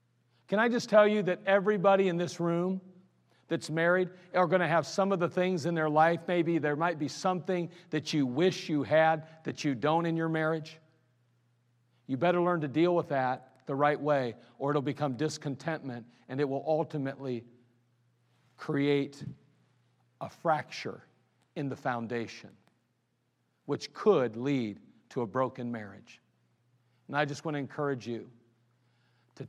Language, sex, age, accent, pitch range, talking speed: English, male, 50-69, American, 120-160 Hz, 160 wpm